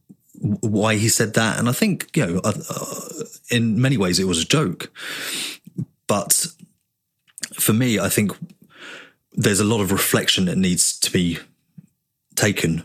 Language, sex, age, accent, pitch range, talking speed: English, male, 30-49, British, 95-125 Hz, 145 wpm